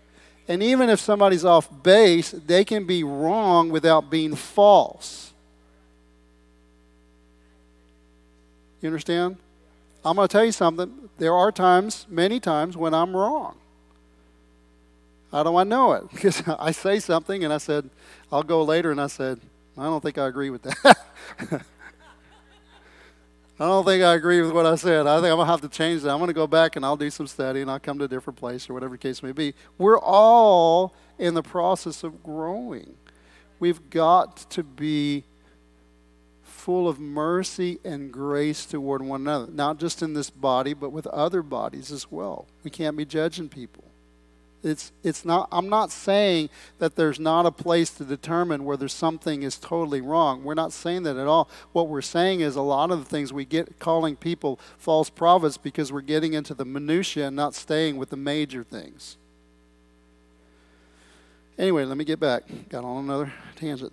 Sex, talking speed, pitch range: male, 180 wpm, 120-170 Hz